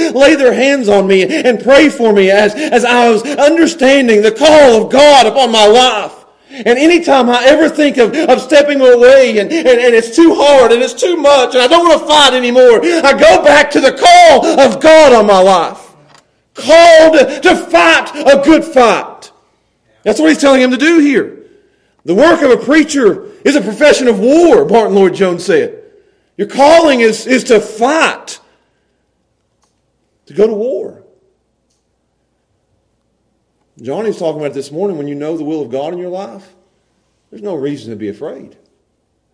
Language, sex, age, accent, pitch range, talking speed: English, male, 40-59, American, 210-310 Hz, 180 wpm